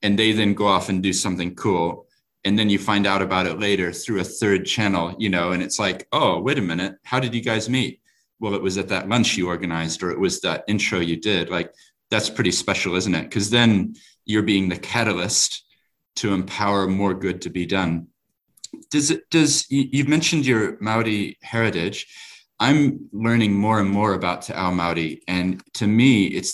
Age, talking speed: 40-59, 200 wpm